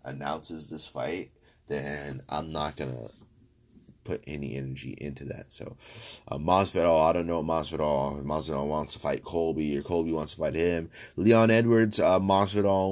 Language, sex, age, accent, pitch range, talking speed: English, male, 30-49, American, 85-115 Hz, 160 wpm